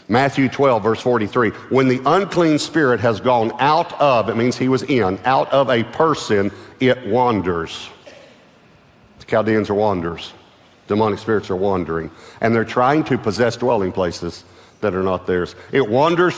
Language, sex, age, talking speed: English, male, 50-69, 160 wpm